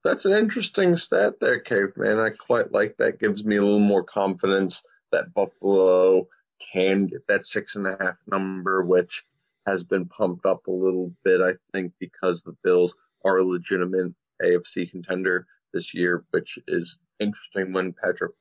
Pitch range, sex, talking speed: 90-125 Hz, male, 155 wpm